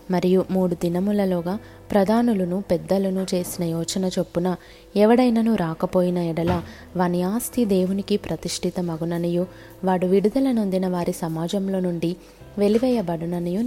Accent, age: native, 20-39